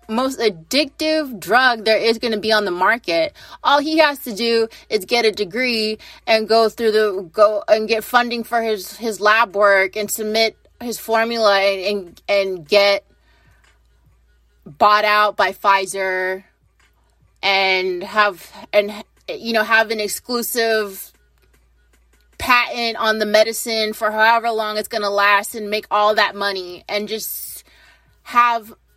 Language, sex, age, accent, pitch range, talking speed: English, female, 20-39, American, 195-235 Hz, 145 wpm